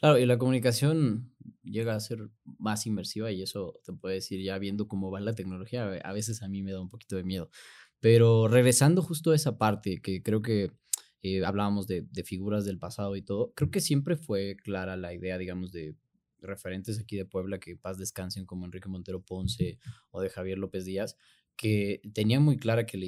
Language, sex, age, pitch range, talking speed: Spanish, male, 20-39, 95-115 Hz, 205 wpm